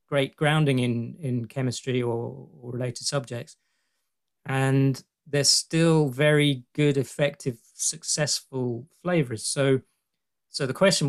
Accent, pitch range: British, 120-145 Hz